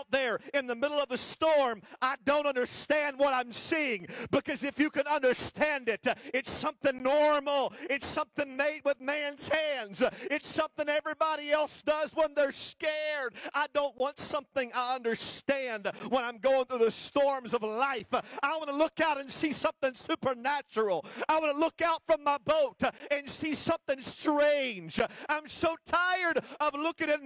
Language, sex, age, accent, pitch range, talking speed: English, male, 50-69, American, 220-295 Hz, 170 wpm